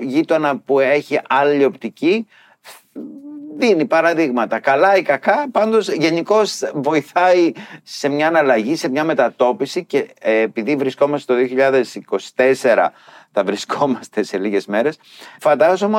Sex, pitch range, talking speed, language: male, 95-140 Hz, 115 wpm, Greek